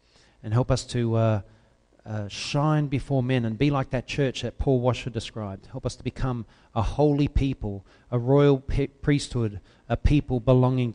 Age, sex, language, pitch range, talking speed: 40-59, male, English, 110-140 Hz, 170 wpm